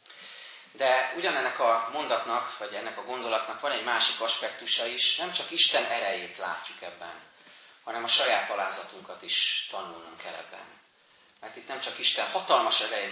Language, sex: Hungarian, male